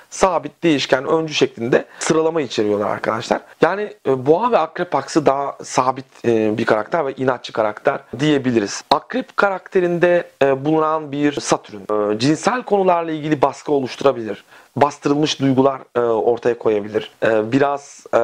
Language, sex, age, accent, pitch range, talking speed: Turkish, male, 40-59, native, 125-160 Hz, 115 wpm